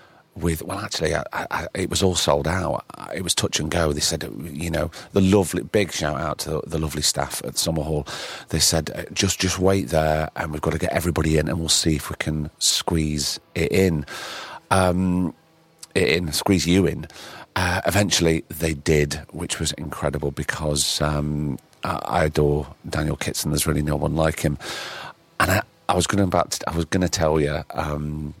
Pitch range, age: 75-95 Hz, 40-59